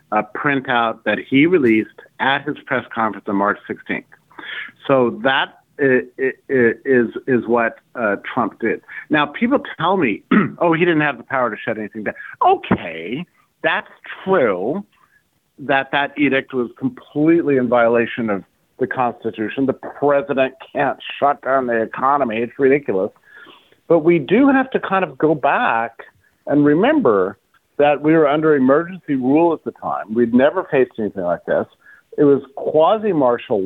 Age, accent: 50-69, American